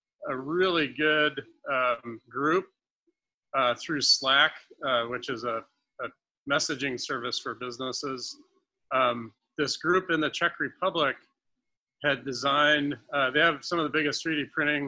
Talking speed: 140 wpm